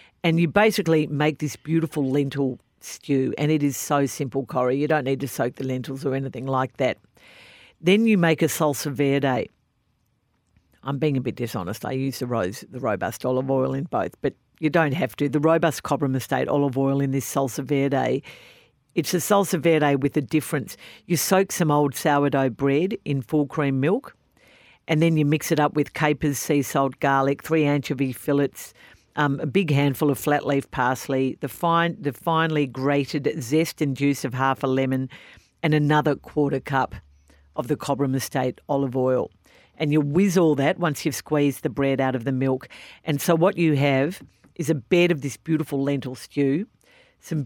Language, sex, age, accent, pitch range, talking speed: English, female, 50-69, Australian, 135-160 Hz, 190 wpm